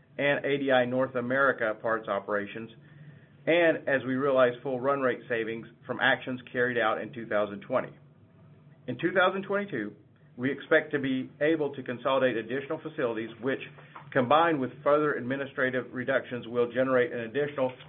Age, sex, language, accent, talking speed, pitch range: 40-59, male, English, American, 140 wpm, 120-145 Hz